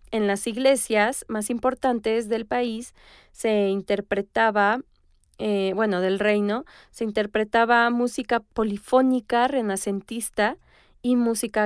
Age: 20-39